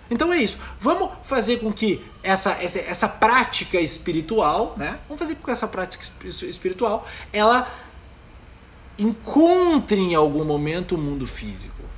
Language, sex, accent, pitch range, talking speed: Portuguese, male, Brazilian, 170-235 Hz, 140 wpm